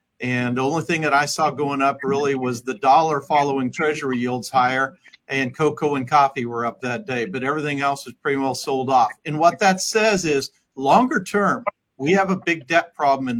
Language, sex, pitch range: English, male, 135-155 Hz